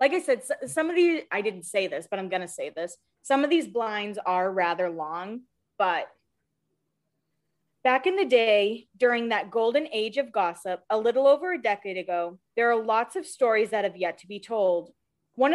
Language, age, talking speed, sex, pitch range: English, 20-39, 200 wpm, female, 200-270 Hz